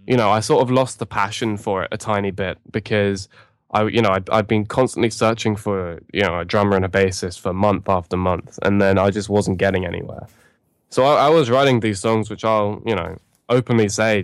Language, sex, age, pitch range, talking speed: English, male, 10-29, 95-115 Hz, 230 wpm